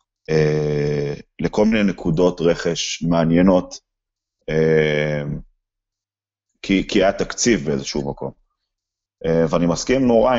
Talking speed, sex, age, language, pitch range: 100 wpm, male, 30-49, Hebrew, 80-100 Hz